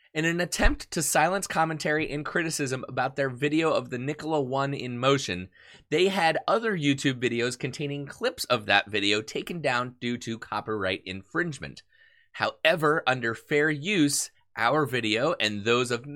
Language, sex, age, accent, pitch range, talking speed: English, male, 30-49, American, 115-150 Hz, 155 wpm